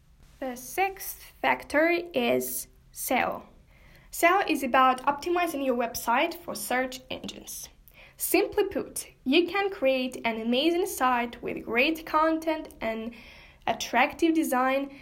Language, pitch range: English, 250-320 Hz